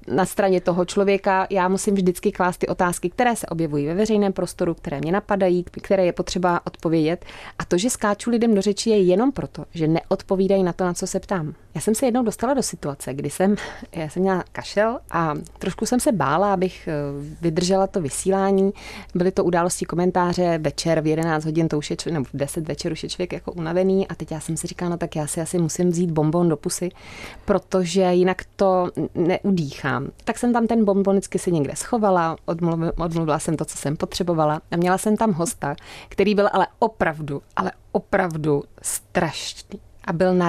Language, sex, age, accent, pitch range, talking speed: Czech, female, 20-39, native, 165-200 Hz, 200 wpm